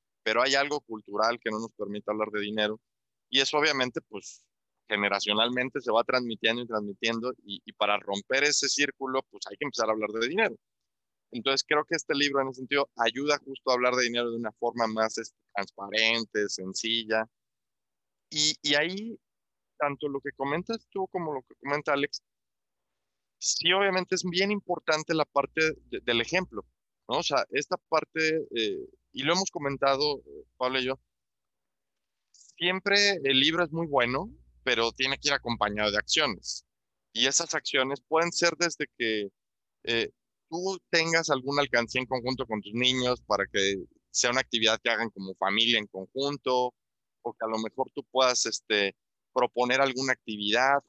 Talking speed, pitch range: 170 wpm, 110-150 Hz